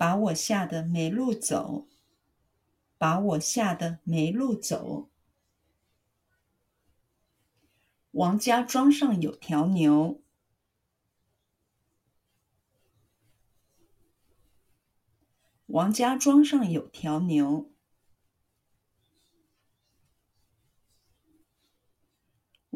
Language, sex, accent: Chinese, female, native